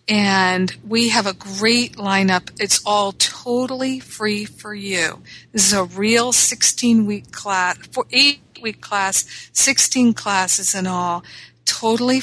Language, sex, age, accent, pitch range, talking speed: English, female, 50-69, American, 190-225 Hz, 125 wpm